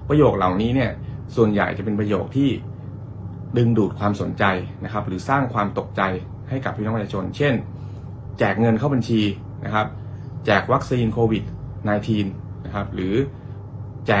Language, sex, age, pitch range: Thai, male, 20-39, 100-120 Hz